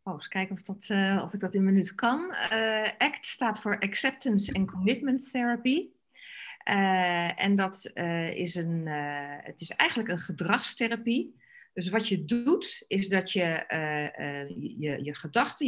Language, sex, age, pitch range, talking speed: Dutch, female, 40-59, 180-235 Hz, 170 wpm